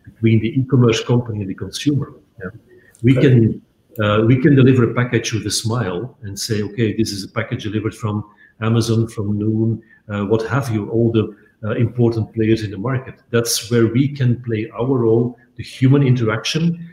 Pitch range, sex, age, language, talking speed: 110-130 Hz, male, 50-69, English, 190 wpm